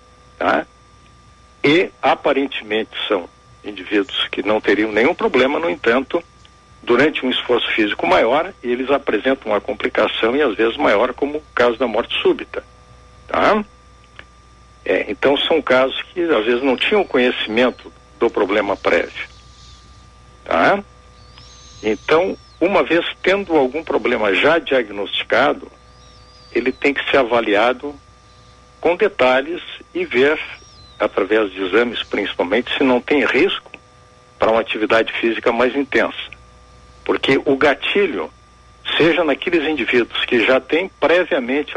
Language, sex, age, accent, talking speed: Portuguese, male, 60-79, Brazilian, 125 wpm